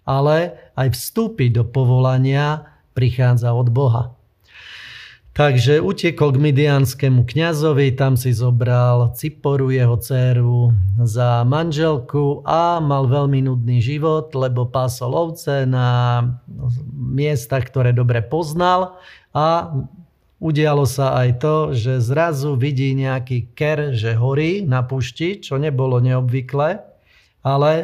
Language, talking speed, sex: Slovak, 110 wpm, male